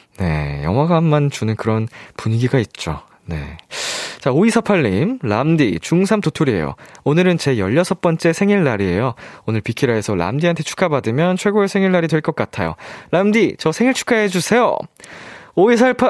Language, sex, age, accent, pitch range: Korean, male, 20-39, native, 110-180 Hz